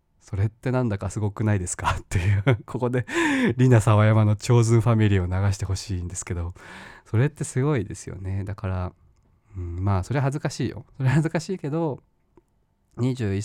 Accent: native